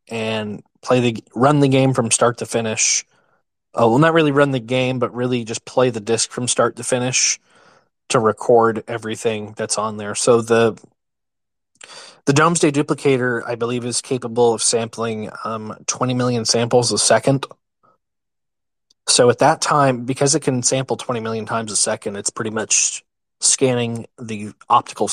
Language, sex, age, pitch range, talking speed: English, male, 20-39, 115-130 Hz, 165 wpm